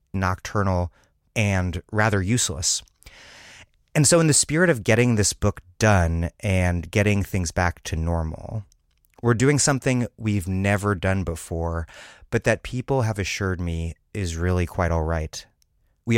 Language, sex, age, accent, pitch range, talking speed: English, male, 30-49, American, 85-115 Hz, 145 wpm